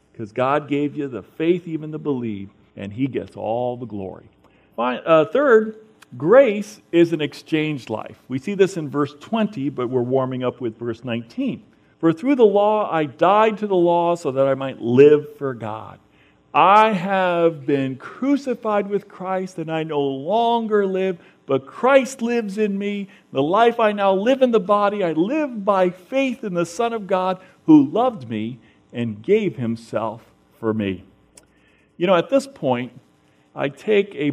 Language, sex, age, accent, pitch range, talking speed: English, male, 50-69, American, 135-210 Hz, 175 wpm